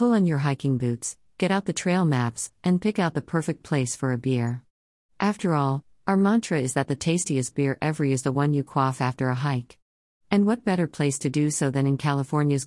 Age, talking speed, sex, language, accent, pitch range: 50-69, 225 wpm, female, English, American, 130-155 Hz